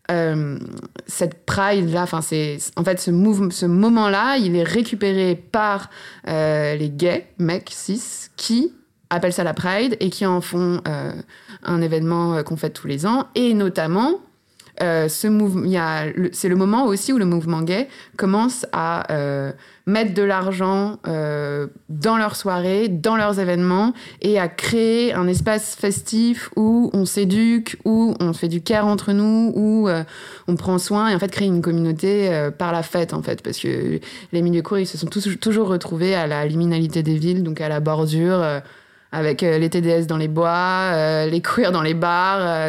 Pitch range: 165-210 Hz